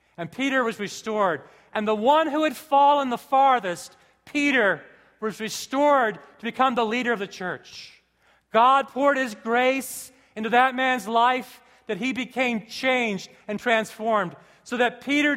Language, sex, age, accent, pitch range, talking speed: English, male, 40-59, American, 180-245 Hz, 150 wpm